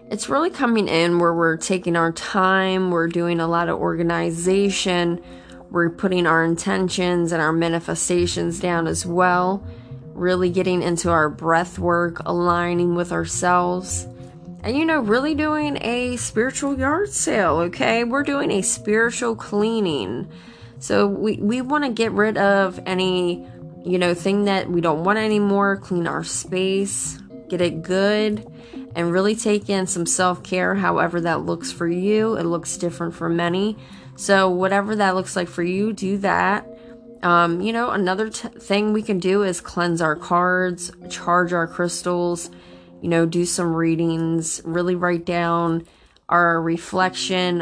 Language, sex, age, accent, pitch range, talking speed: English, female, 20-39, American, 170-210 Hz, 155 wpm